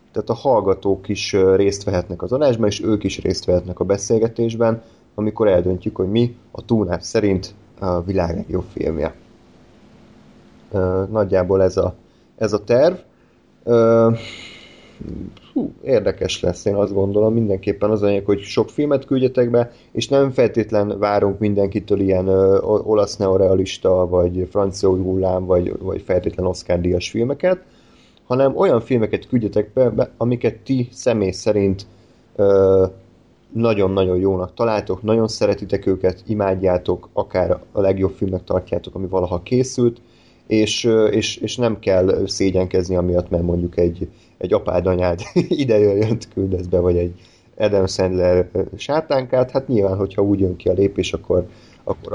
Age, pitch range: 30-49, 95-115 Hz